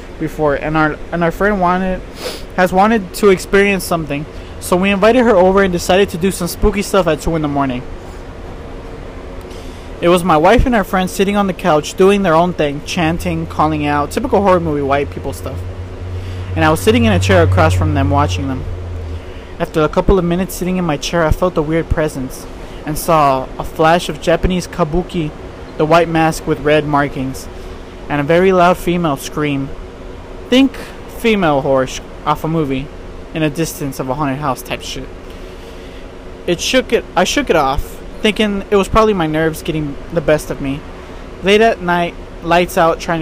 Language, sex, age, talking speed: English, male, 20-39, 190 wpm